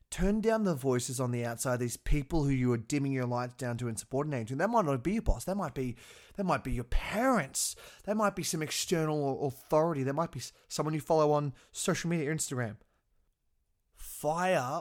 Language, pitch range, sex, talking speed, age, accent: English, 115-155 Hz, male, 215 wpm, 20-39, Australian